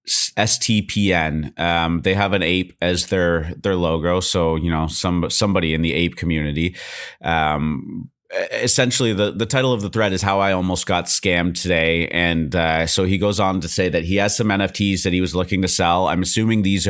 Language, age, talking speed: English, 30-49, 200 wpm